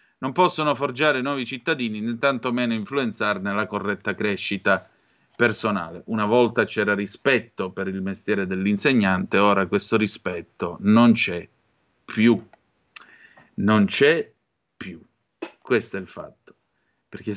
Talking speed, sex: 115 wpm, male